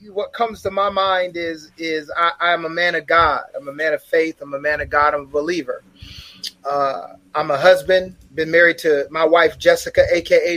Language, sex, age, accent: English, male, 30-49, American